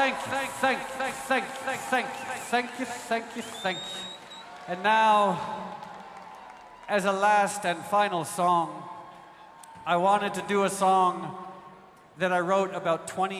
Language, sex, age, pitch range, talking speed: English, male, 50-69, 175-210 Hz, 130 wpm